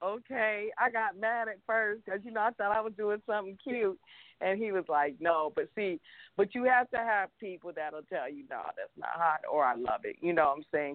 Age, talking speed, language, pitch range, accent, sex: 40-59, 245 wpm, English, 175-225 Hz, American, female